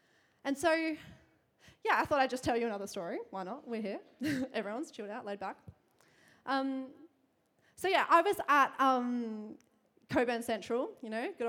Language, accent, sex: English, Australian, female